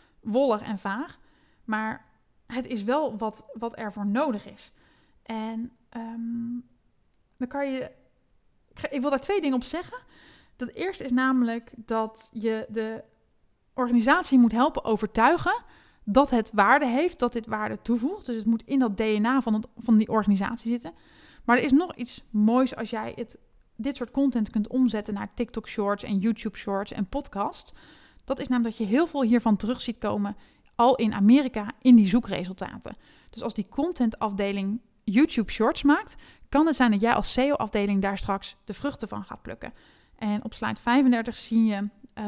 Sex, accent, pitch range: female, Dutch, 215-260 Hz